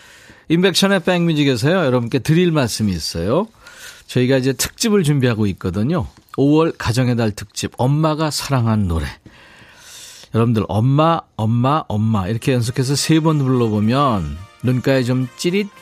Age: 40-59